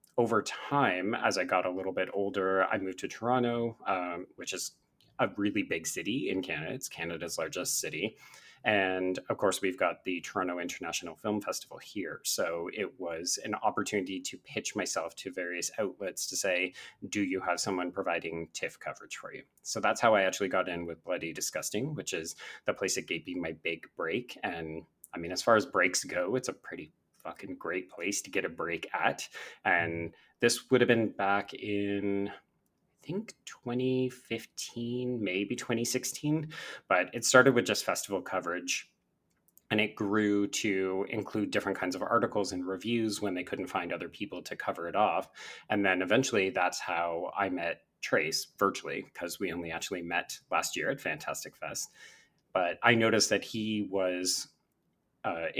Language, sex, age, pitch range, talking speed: English, male, 30-49, 95-120 Hz, 175 wpm